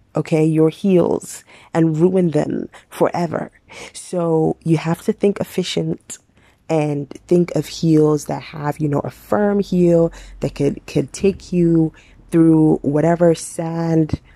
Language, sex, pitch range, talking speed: English, female, 150-175 Hz, 135 wpm